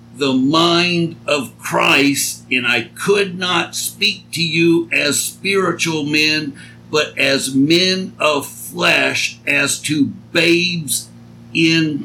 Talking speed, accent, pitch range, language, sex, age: 115 wpm, American, 135-175 Hz, English, male, 60-79